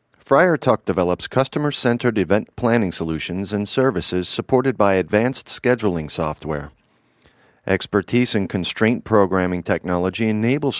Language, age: English, 40-59